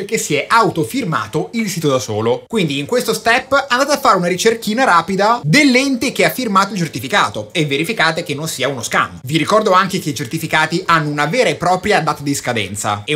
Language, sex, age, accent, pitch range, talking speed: Italian, male, 30-49, native, 130-215 Hz, 210 wpm